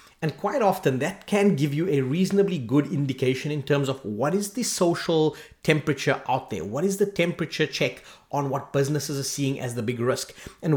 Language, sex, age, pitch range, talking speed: English, male, 30-49, 140-190 Hz, 200 wpm